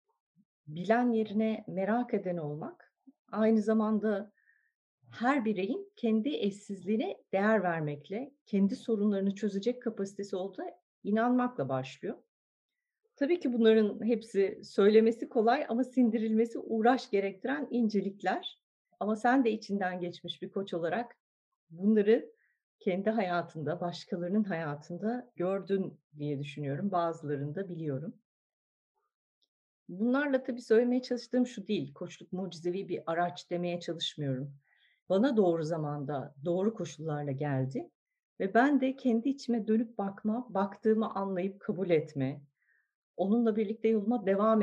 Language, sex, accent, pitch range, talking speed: Turkish, female, native, 175-235 Hz, 110 wpm